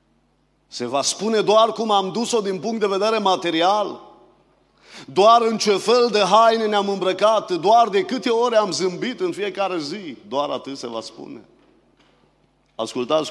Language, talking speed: Romanian, 160 wpm